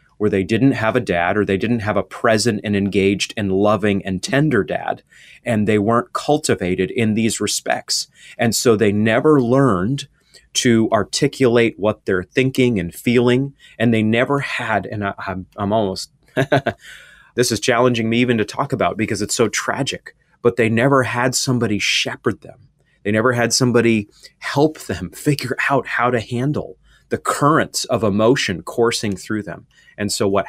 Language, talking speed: English, 170 wpm